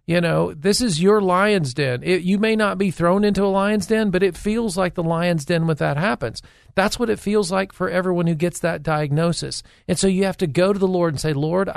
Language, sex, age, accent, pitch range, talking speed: English, male, 40-59, American, 155-195 Hz, 250 wpm